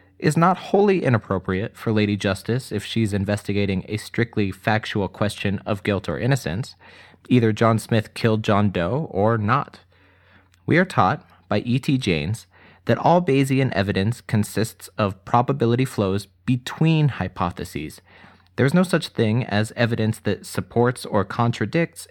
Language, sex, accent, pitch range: English, male, American, 95-125 Hz